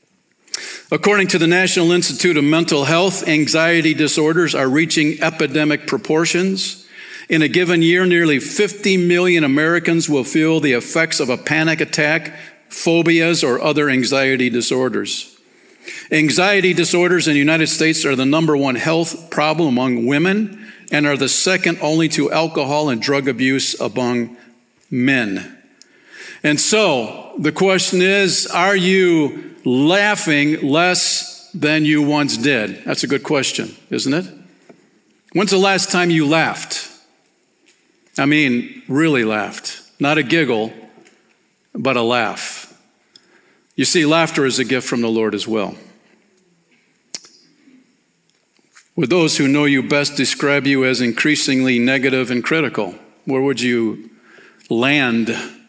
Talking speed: 135 wpm